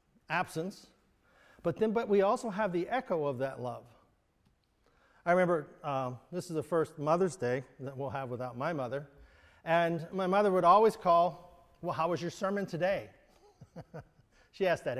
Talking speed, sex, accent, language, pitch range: 170 wpm, male, American, English, 155-205 Hz